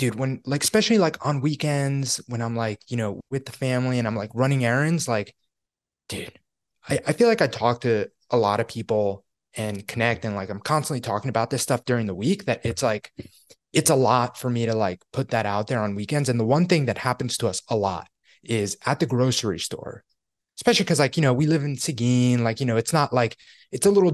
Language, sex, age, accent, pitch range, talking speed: English, male, 20-39, American, 110-135 Hz, 235 wpm